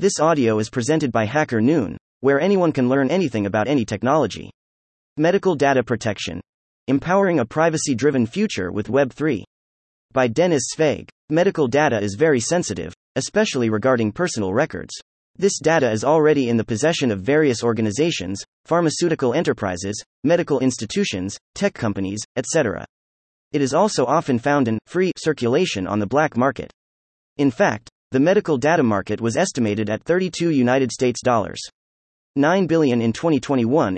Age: 30-49